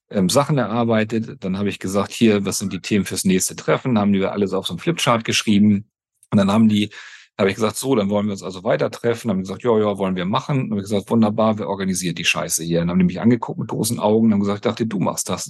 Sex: male